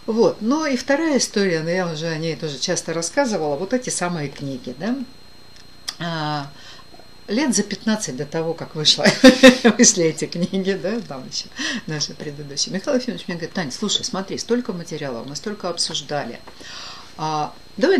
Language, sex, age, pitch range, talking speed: Russian, female, 60-79, 155-230 Hz, 155 wpm